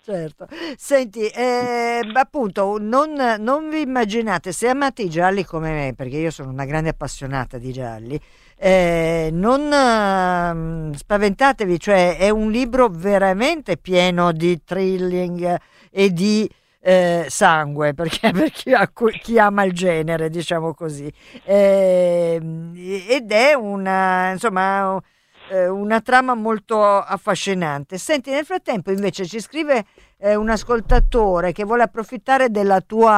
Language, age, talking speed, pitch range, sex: Italian, 50-69, 125 wpm, 175-230 Hz, female